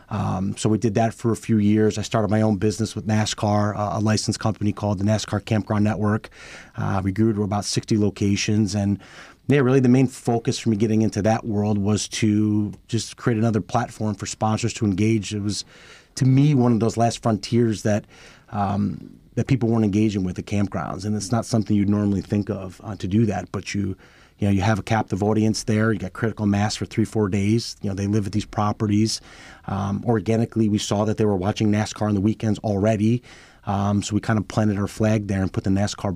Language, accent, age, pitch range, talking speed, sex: English, American, 30-49, 100-110 Hz, 225 wpm, male